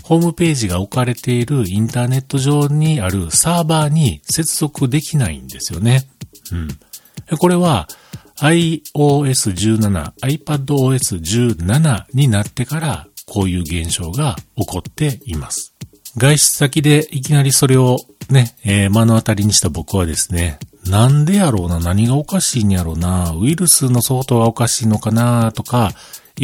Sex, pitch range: male, 100-140 Hz